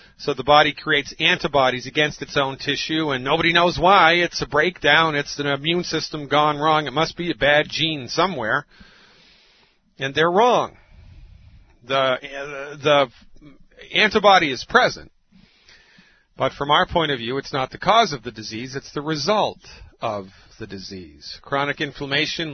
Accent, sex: American, male